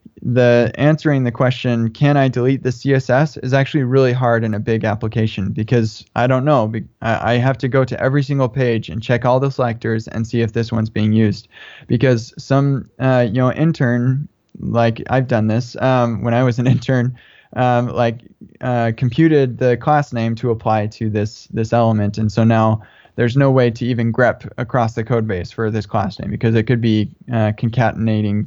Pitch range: 115-130 Hz